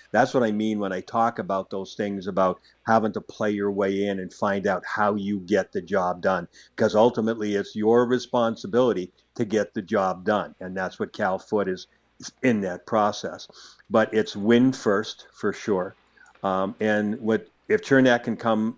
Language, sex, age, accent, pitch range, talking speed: English, male, 50-69, American, 105-125 Hz, 185 wpm